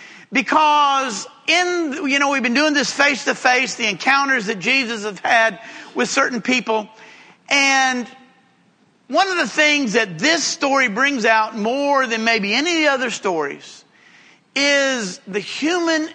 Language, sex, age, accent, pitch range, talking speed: English, male, 50-69, American, 230-295 Hz, 140 wpm